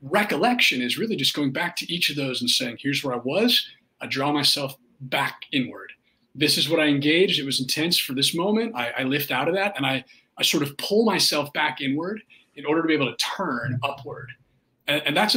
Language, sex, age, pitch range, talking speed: English, male, 30-49, 130-170 Hz, 225 wpm